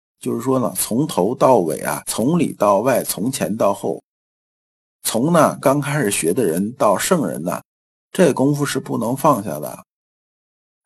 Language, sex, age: Chinese, male, 50-69